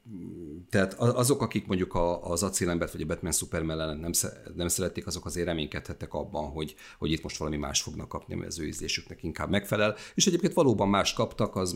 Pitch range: 75-95 Hz